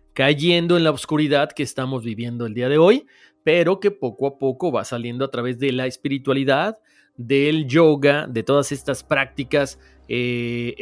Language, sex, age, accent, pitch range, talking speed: Spanish, male, 40-59, Mexican, 130-175 Hz, 165 wpm